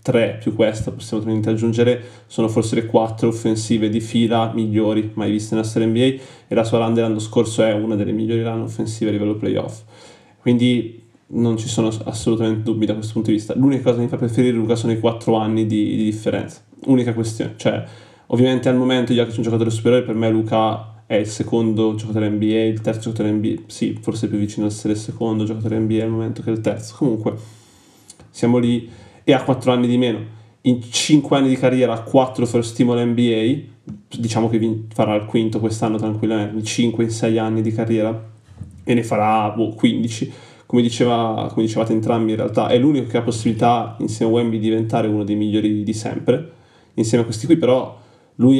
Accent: native